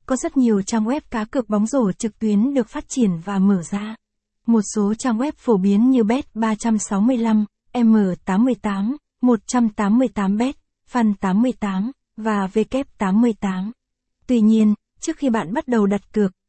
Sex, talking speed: female, 145 wpm